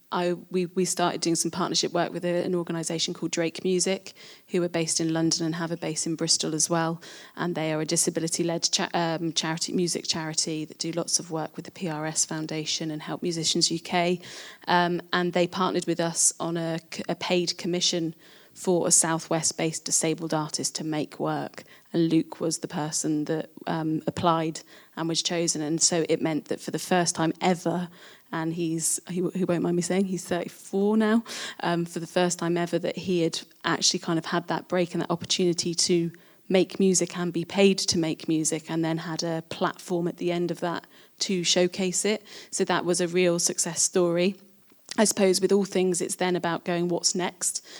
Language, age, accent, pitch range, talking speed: English, 20-39, British, 165-180 Hz, 200 wpm